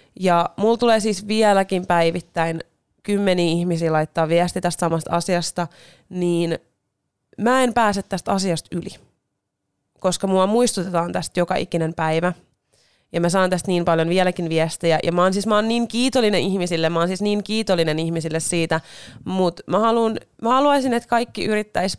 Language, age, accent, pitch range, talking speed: Finnish, 30-49, native, 165-200 Hz, 155 wpm